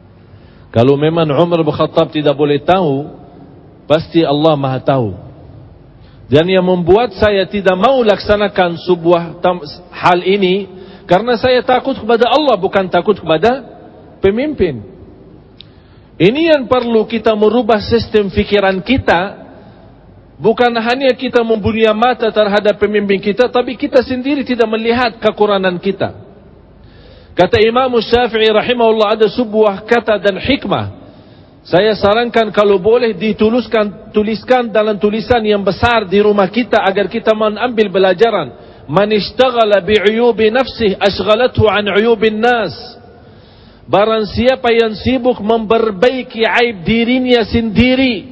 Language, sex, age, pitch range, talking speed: English, male, 50-69, 160-230 Hz, 115 wpm